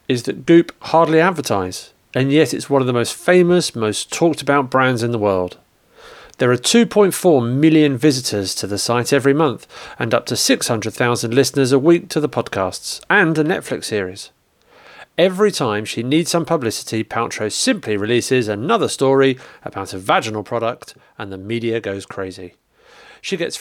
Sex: male